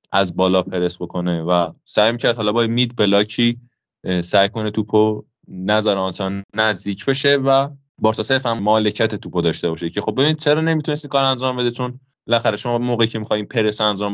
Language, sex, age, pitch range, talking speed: Persian, male, 20-39, 100-130 Hz, 170 wpm